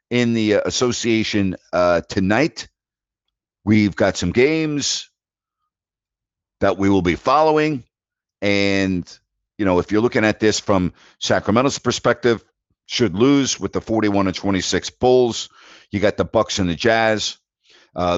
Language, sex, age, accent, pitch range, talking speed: English, male, 50-69, American, 95-120 Hz, 130 wpm